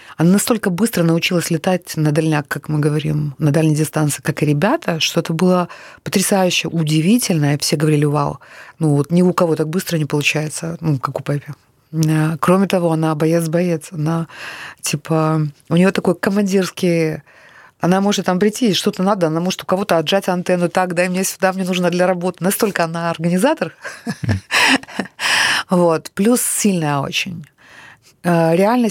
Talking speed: 160 wpm